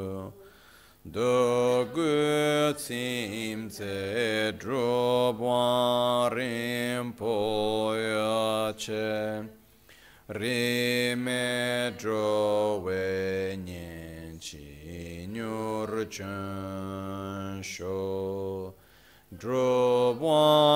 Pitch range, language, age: 95-120 Hz, Italian, 40-59